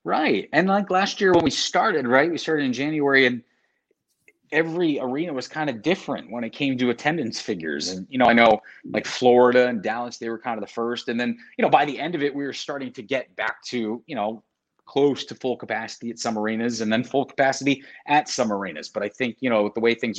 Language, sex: English, male